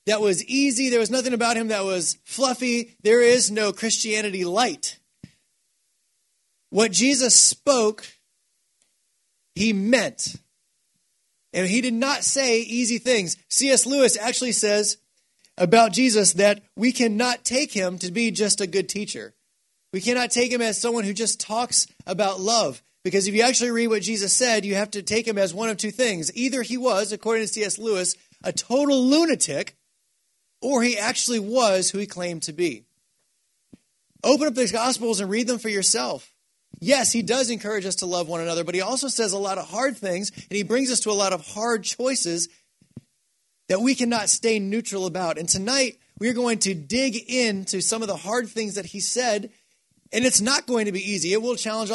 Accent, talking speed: American, 185 wpm